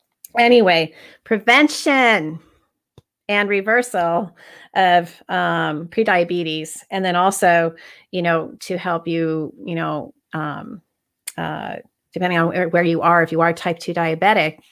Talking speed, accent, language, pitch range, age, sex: 120 wpm, American, English, 165-200 Hz, 30-49, female